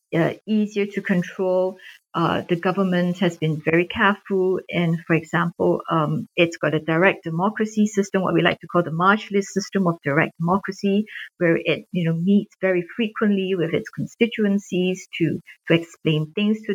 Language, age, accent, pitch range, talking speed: English, 50-69, Malaysian, 170-200 Hz, 170 wpm